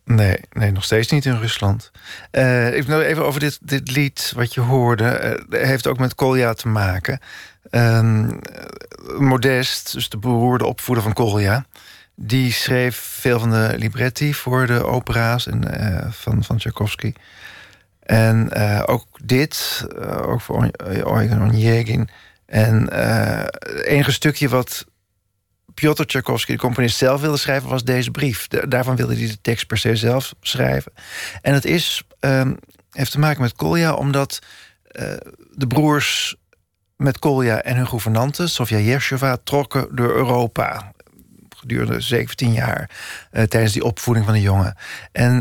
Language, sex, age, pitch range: Dutch, male, 40-59, 110-135 Hz